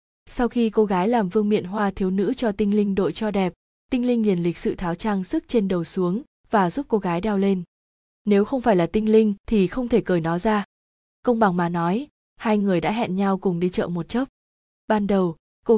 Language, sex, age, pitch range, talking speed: Vietnamese, female, 20-39, 185-230 Hz, 235 wpm